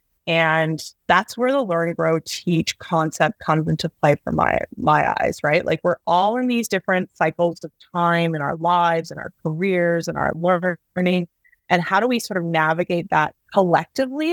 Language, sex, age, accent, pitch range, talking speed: English, female, 20-39, American, 165-205 Hz, 180 wpm